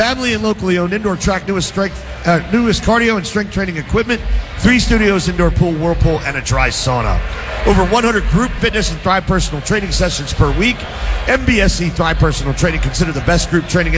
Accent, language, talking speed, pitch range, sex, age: American, English, 185 wpm, 155-210 Hz, male, 50-69